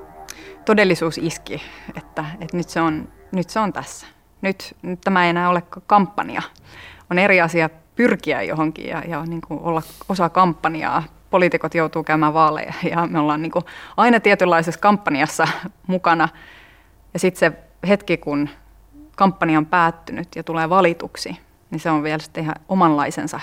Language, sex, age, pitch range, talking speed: Finnish, female, 30-49, 155-185 Hz, 140 wpm